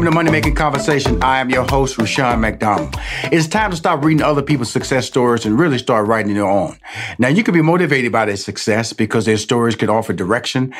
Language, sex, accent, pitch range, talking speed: English, male, American, 110-140 Hz, 220 wpm